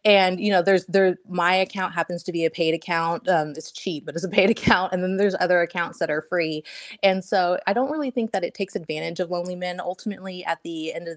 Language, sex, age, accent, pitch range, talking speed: English, female, 20-39, American, 160-185 Hz, 250 wpm